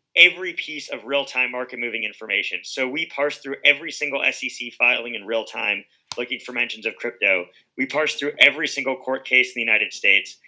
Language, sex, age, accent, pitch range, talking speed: English, male, 30-49, American, 125-145 Hz, 185 wpm